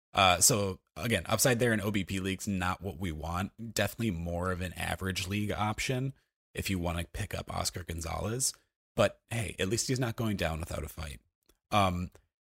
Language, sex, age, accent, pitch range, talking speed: English, male, 30-49, American, 85-110 Hz, 190 wpm